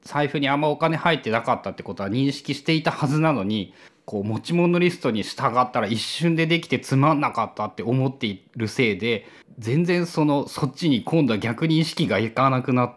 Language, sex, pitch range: Japanese, male, 110-160 Hz